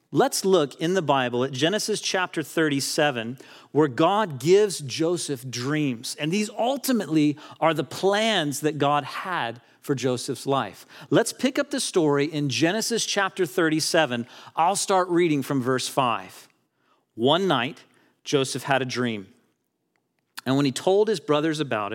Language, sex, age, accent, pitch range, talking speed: English, male, 40-59, American, 135-195 Hz, 150 wpm